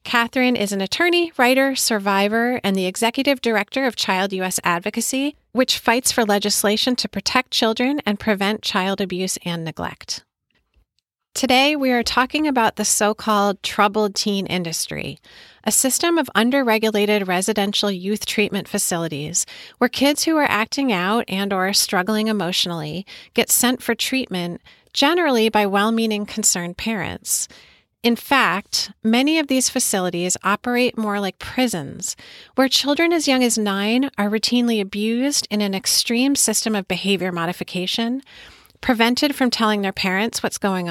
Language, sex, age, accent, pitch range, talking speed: English, female, 30-49, American, 195-245 Hz, 140 wpm